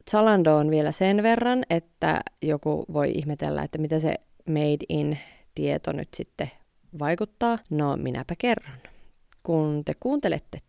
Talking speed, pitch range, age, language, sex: 125 wpm, 140-190 Hz, 30-49, Finnish, female